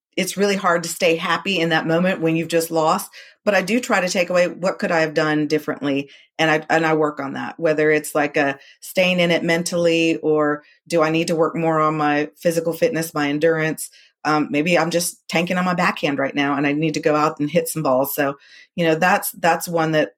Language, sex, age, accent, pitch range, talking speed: English, female, 40-59, American, 150-170 Hz, 240 wpm